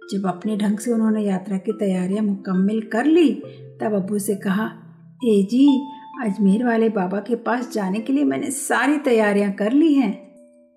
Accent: native